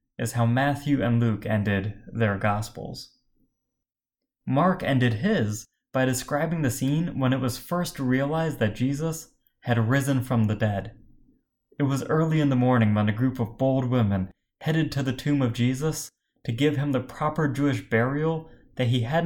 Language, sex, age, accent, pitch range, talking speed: English, male, 20-39, American, 115-145 Hz, 170 wpm